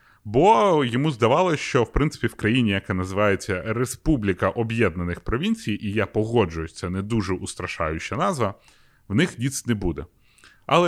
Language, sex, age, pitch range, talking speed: Ukrainian, male, 30-49, 100-135 Hz, 150 wpm